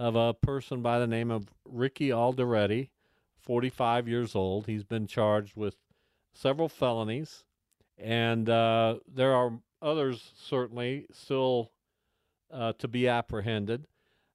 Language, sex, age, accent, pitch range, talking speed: English, male, 50-69, American, 110-135 Hz, 120 wpm